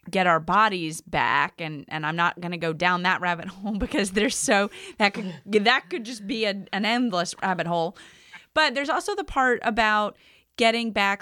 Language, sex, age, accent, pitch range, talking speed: English, female, 30-49, American, 170-220 Hz, 195 wpm